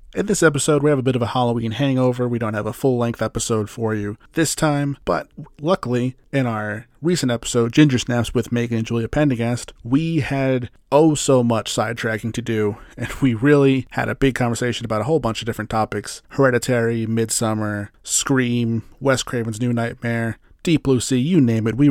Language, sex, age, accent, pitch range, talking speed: English, male, 30-49, American, 115-135 Hz, 185 wpm